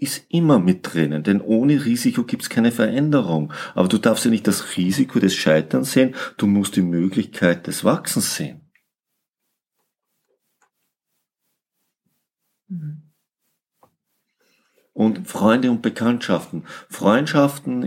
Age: 50-69